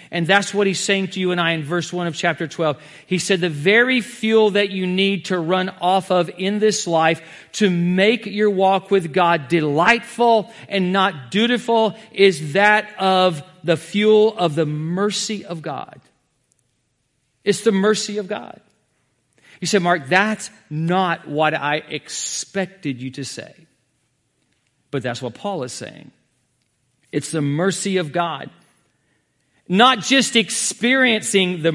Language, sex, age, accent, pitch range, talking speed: English, male, 40-59, American, 170-210 Hz, 155 wpm